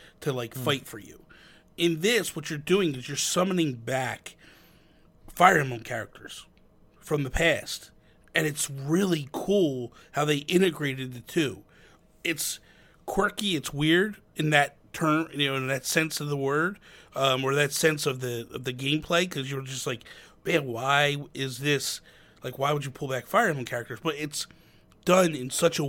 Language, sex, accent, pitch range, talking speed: English, male, American, 125-160 Hz, 175 wpm